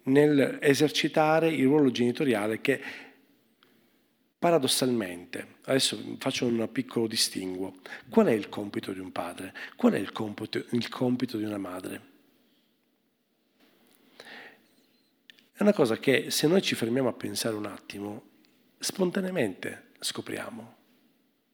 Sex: male